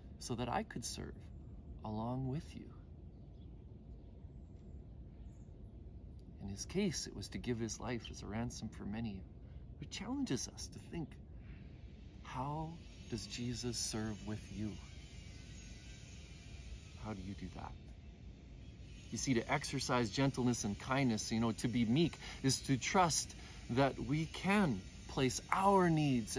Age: 40-59